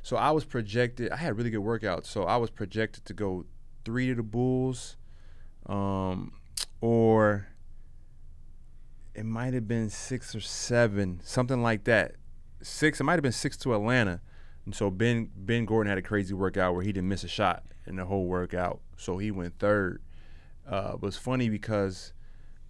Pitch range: 95-120 Hz